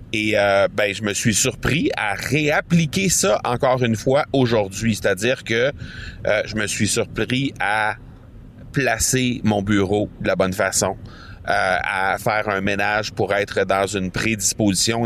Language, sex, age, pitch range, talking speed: French, male, 30-49, 100-125 Hz, 155 wpm